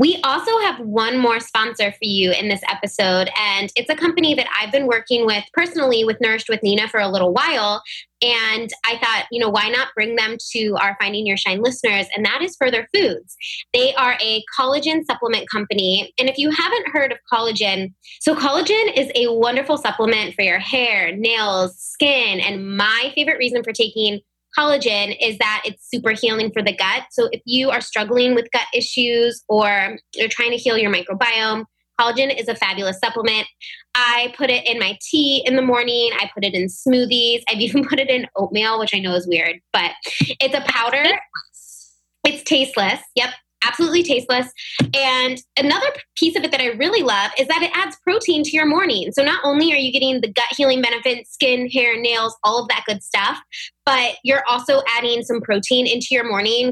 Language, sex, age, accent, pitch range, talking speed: English, female, 20-39, American, 210-265 Hz, 195 wpm